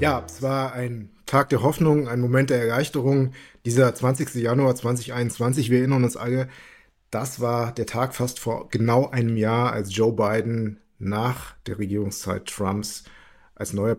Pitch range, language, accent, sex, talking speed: 110-130 Hz, German, German, male, 160 wpm